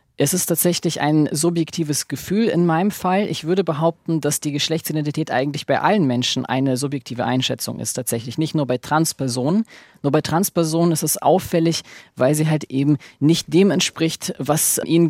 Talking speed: 170 wpm